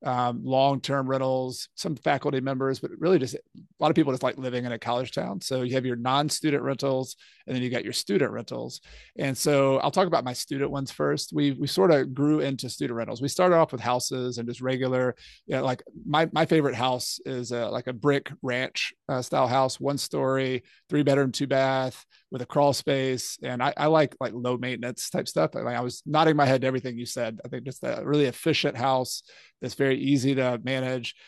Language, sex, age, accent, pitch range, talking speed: English, male, 30-49, American, 125-145 Hz, 225 wpm